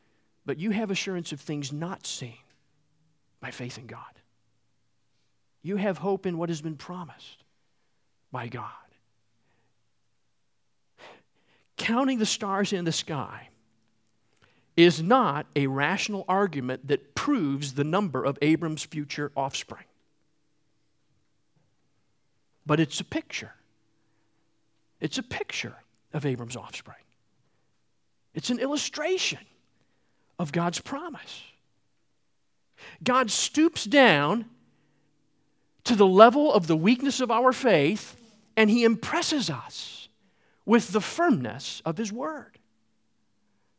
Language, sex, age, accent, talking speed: English, male, 50-69, American, 110 wpm